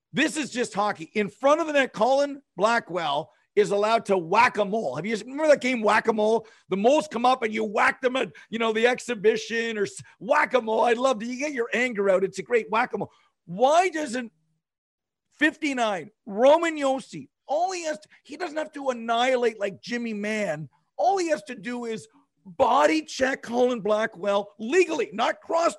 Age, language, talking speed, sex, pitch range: 50-69, English, 205 wpm, male, 205-265 Hz